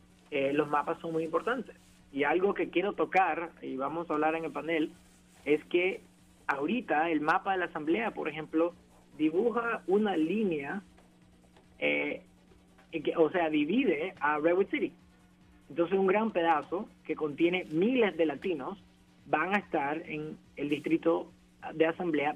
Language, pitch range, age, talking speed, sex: Spanish, 135-175 Hz, 30-49, 150 wpm, male